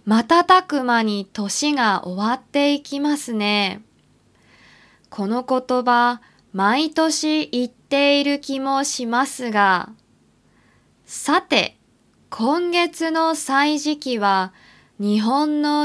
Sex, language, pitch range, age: female, Japanese, 210-300 Hz, 20-39